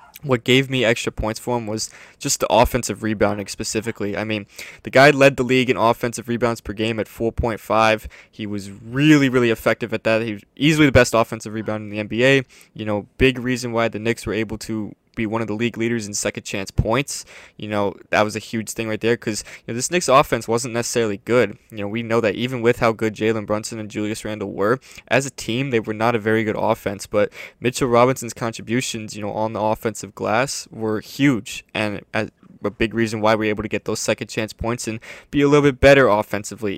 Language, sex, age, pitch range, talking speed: English, male, 20-39, 105-120 Hz, 225 wpm